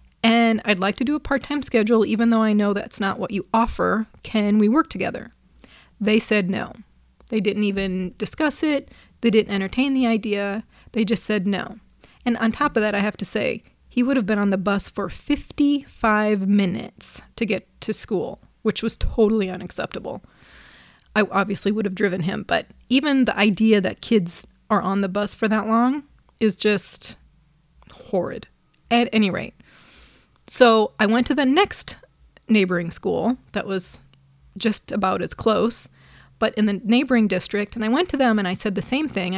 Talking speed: 185 wpm